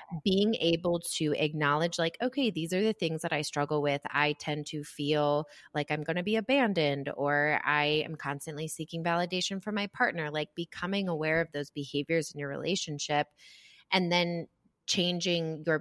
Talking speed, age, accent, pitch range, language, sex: 175 wpm, 20-39, American, 145-165 Hz, English, female